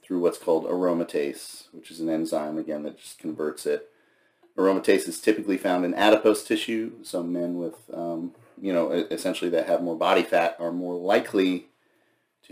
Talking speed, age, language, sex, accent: 175 wpm, 40-59, English, male, American